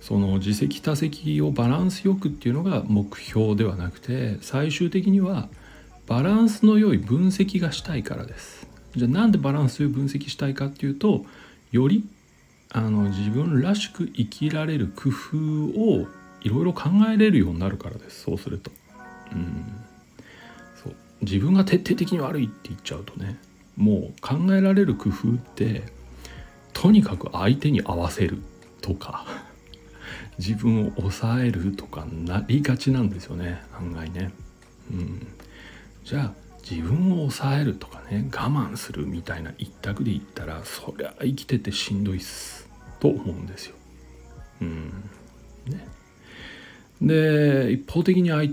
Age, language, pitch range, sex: 60-79, Japanese, 95-150 Hz, male